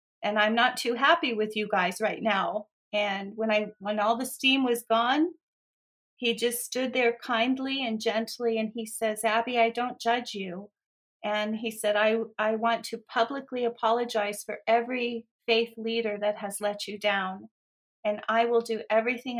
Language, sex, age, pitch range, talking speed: English, female, 40-59, 215-245 Hz, 175 wpm